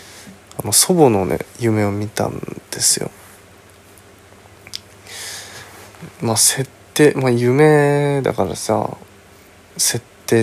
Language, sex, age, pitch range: Japanese, male, 20-39, 100-135 Hz